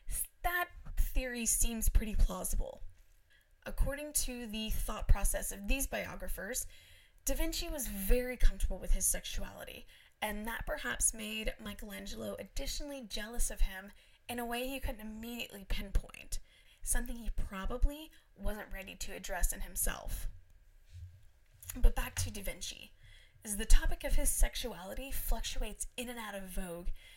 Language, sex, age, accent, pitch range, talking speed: English, female, 10-29, American, 190-245 Hz, 140 wpm